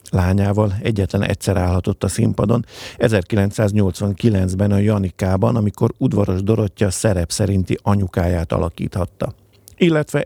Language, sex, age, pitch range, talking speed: Hungarian, male, 50-69, 95-115 Hz, 100 wpm